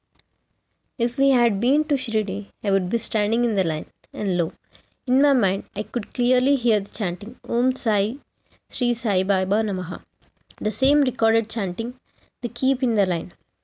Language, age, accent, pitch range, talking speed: Hindi, 20-39, native, 195-245 Hz, 175 wpm